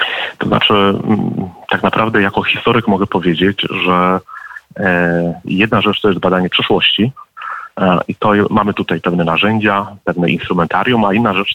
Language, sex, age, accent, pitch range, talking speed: Polish, male, 40-59, native, 95-105 Hz, 145 wpm